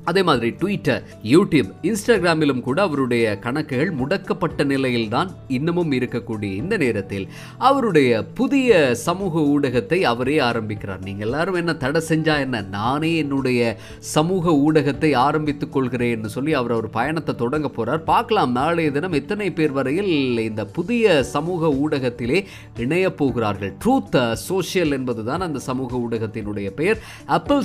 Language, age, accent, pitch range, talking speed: Tamil, 30-49, native, 120-165 Hz, 130 wpm